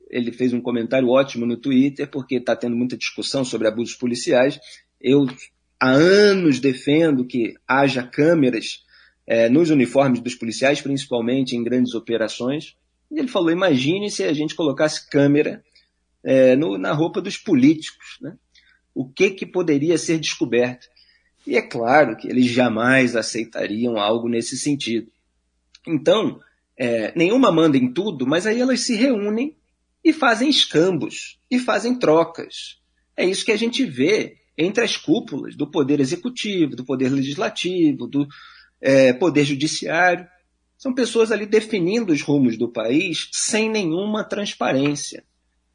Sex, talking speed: male, 140 wpm